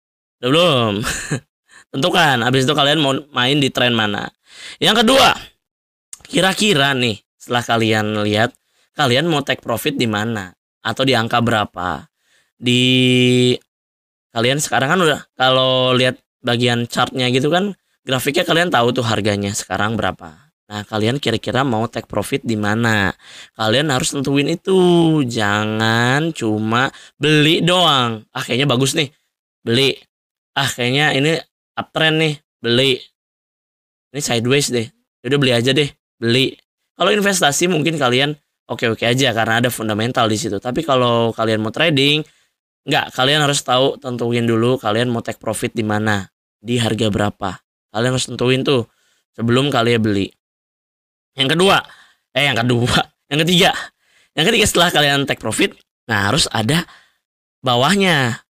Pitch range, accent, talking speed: 115-140 Hz, native, 140 wpm